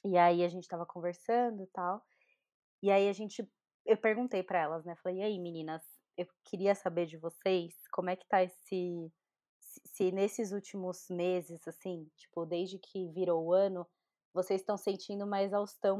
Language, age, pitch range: Portuguese, 20-39, 180-215 Hz